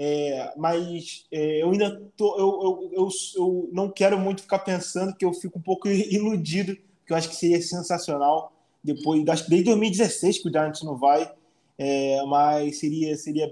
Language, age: Portuguese, 20-39